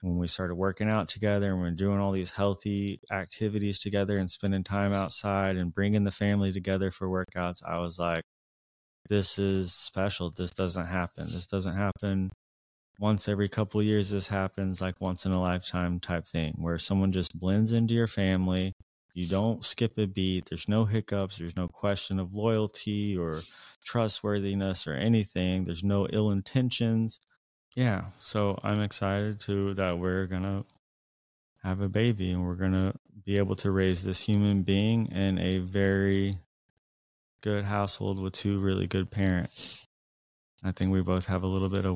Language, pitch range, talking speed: English, 95-100 Hz, 170 wpm